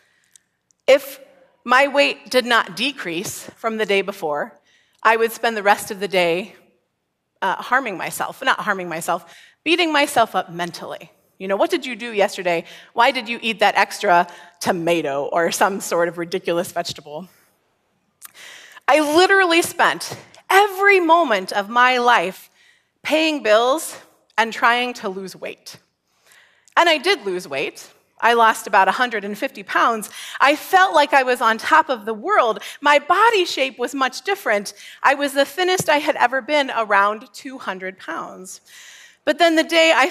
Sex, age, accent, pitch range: female, 30-49, American, 190-275 Hz